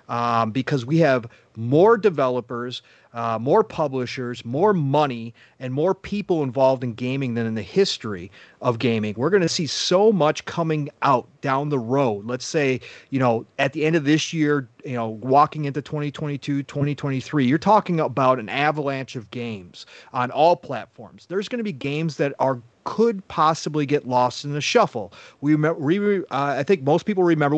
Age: 30-49